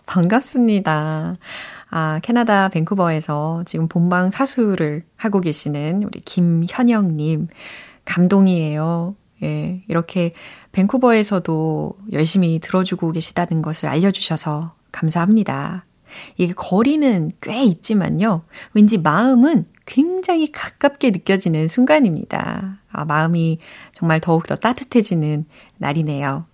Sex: female